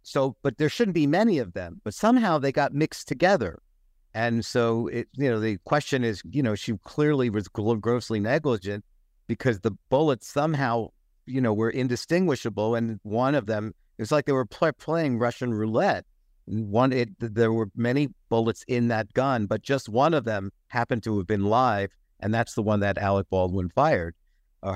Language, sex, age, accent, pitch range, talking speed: English, male, 50-69, American, 105-130 Hz, 190 wpm